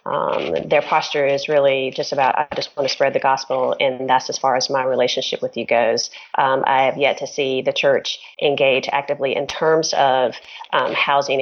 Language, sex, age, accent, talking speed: English, female, 30-49, American, 205 wpm